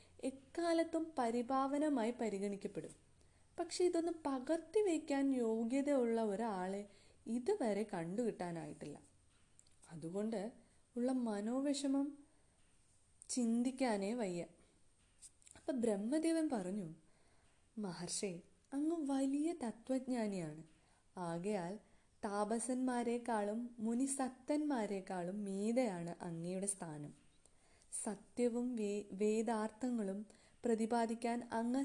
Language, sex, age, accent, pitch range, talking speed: Malayalam, female, 20-39, native, 185-260 Hz, 65 wpm